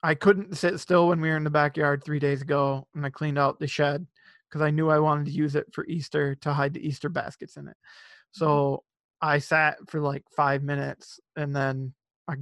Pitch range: 145-165 Hz